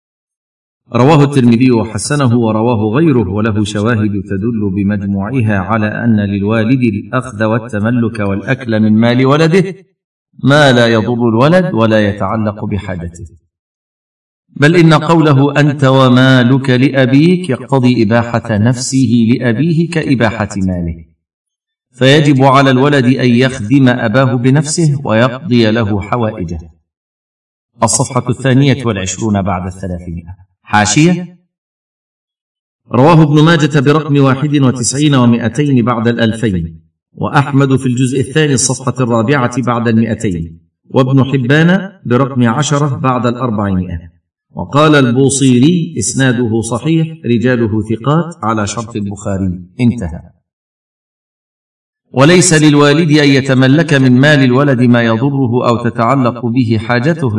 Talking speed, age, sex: 105 wpm, 50-69, male